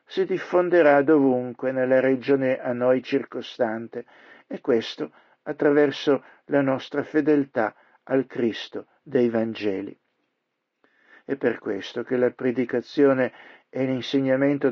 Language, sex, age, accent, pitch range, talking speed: Italian, male, 50-69, native, 130-155 Hz, 105 wpm